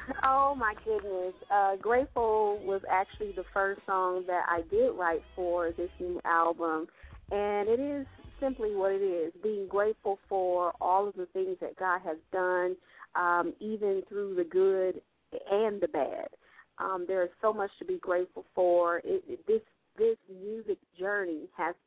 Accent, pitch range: American, 180-220 Hz